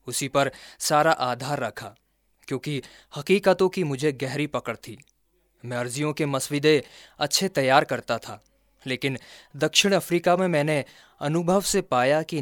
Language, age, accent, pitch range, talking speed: Hindi, 20-39, native, 130-160 Hz, 140 wpm